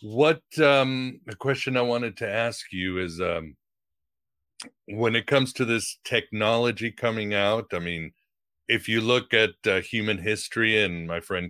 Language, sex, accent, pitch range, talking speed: English, male, American, 95-120 Hz, 160 wpm